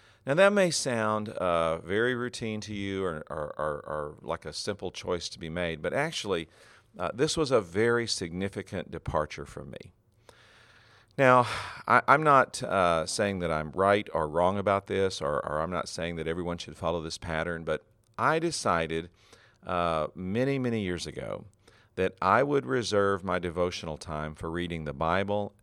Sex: male